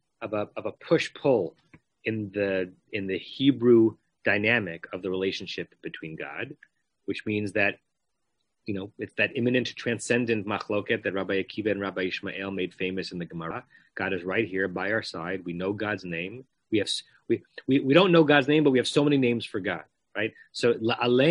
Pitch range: 100-130 Hz